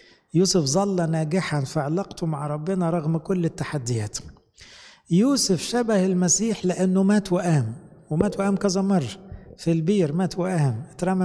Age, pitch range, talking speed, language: 60-79, 150-185 Hz, 125 wpm, English